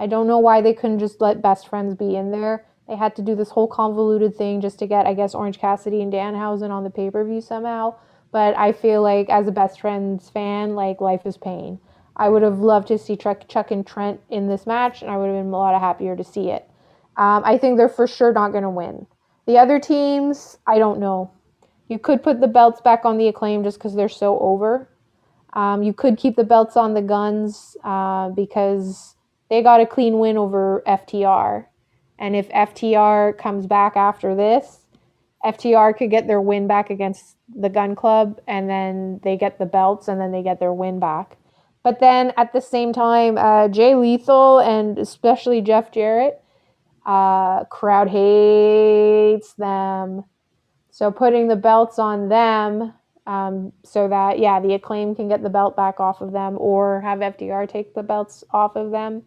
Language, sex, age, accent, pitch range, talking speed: English, female, 20-39, American, 195-225 Hz, 195 wpm